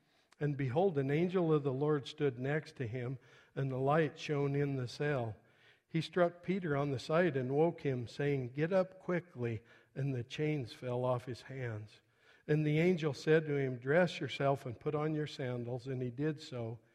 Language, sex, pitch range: English, male, 125-155 Hz